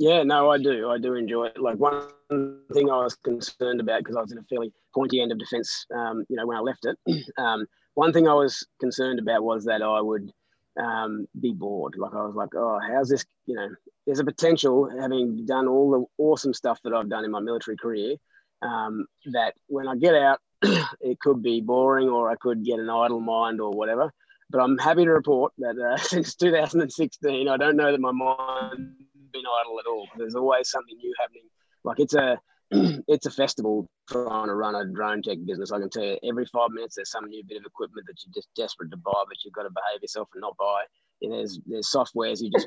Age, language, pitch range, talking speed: 20-39, English, 120-145 Hz, 225 wpm